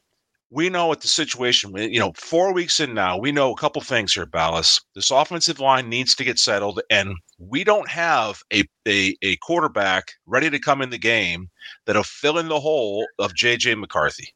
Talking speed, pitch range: 200 wpm, 115-155 Hz